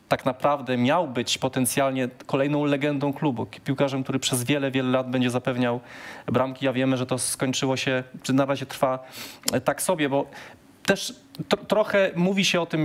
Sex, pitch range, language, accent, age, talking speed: male, 125-150 Hz, Polish, native, 20-39, 175 wpm